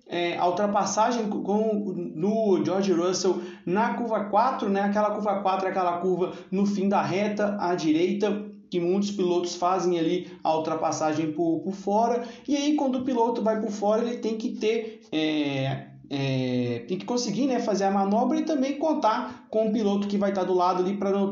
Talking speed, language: 190 wpm, Portuguese